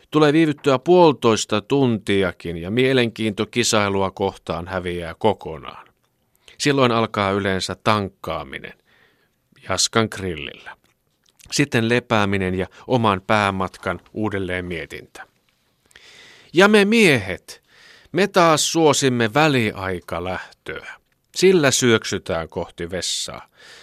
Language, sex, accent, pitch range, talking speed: Finnish, male, native, 95-145 Hz, 85 wpm